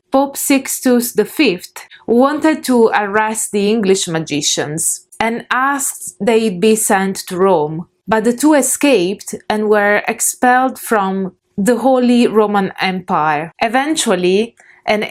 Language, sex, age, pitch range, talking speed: English, female, 20-39, 180-235 Hz, 120 wpm